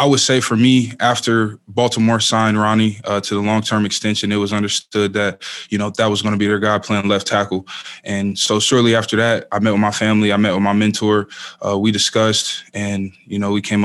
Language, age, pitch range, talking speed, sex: English, 20-39, 100-110 Hz, 235 wpm, male